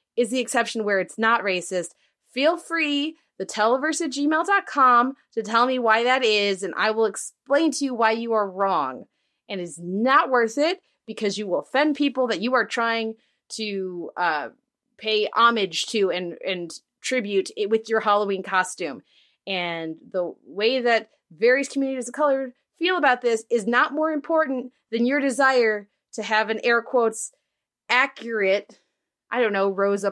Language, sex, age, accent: English, female, 30-49, American